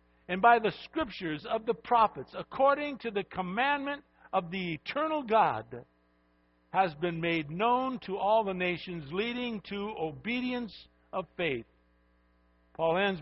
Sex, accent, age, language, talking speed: male, American, 60-79, English, 135 wpm